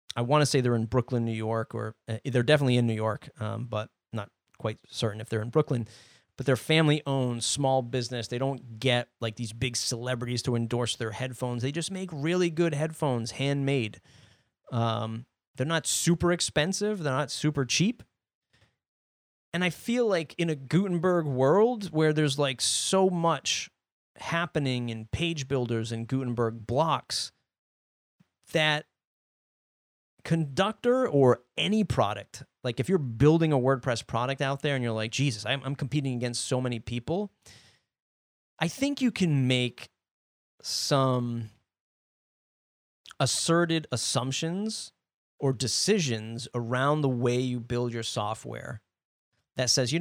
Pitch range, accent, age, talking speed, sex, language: 115-155 Hz, American, 30-49, 145 wpm, male, English